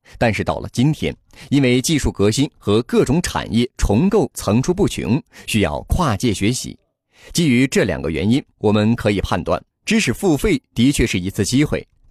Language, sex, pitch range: Chinese, male, 105-140 Hz